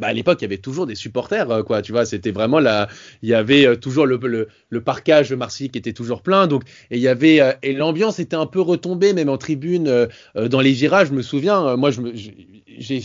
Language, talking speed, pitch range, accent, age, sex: French, 245 wpm, 115-145 Hz, French, 20-39, male